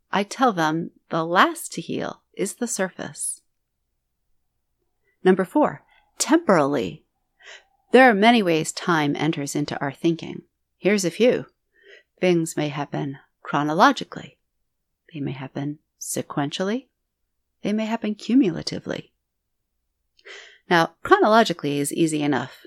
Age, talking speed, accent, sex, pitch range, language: 40-59, 110 wpm, American, female, 160-235 Hz, English